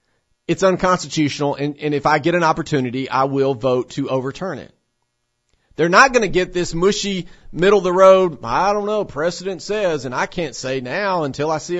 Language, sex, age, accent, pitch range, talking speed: English, male, 40-59, American, 135-175 Hz, 185 wpm